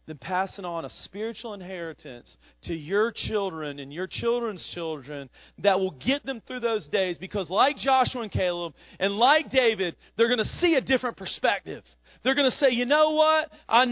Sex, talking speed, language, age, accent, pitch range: male, 185 wpm, English, 40-59, American, 190-265 Hz